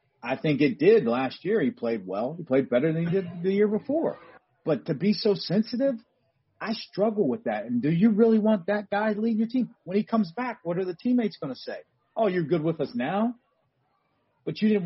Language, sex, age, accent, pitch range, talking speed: English, male, 40-59, American, 155-225 Hz, 235 wpm